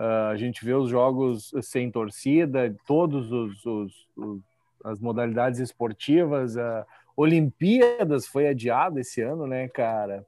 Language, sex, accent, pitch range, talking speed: Portuguese, male, Brazilian, 125-150 Hz, 135 wpm